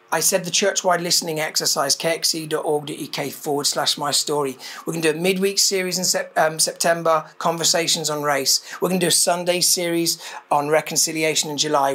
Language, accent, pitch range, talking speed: English, British, 160-205 Hz, 175 wpm